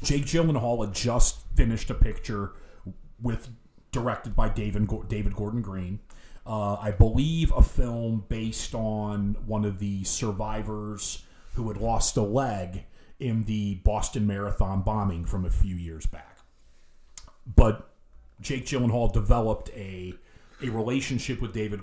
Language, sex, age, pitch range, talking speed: English, male, 30-49, 95-120 Hz, 135 wpm